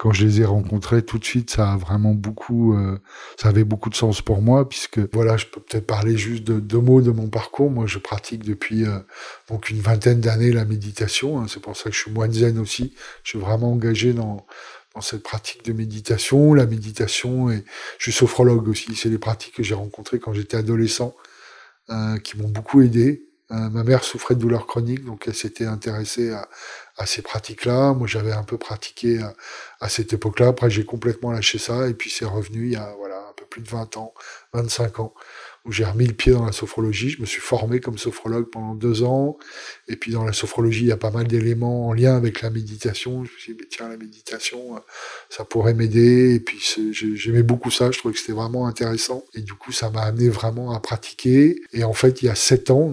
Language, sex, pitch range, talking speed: French, male, 110-120 Hz, 225 wpm